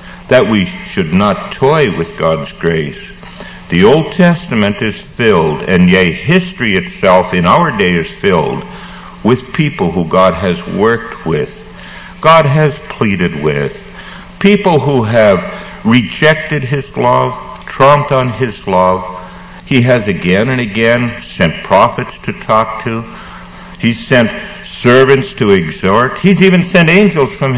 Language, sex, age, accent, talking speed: English, male, 60-79, American, 135 wpm